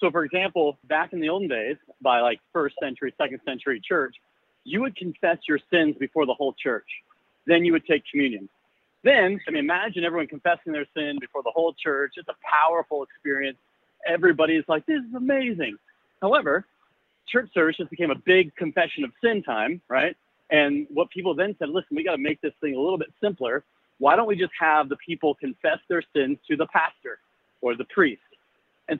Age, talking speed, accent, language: 40-59, 195 wpm, American, English